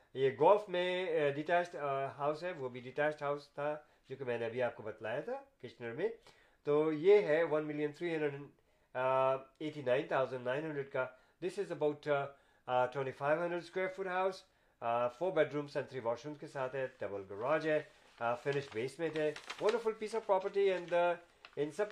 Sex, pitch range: male, 135-175 Hz